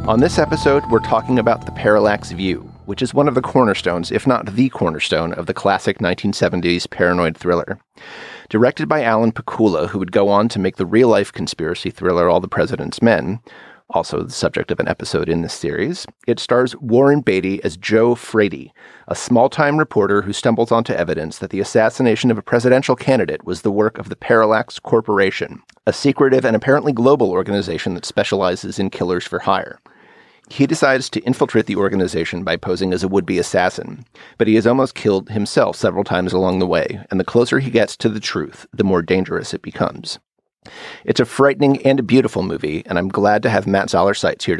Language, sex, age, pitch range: English, male, 30-49, 100-125 Hz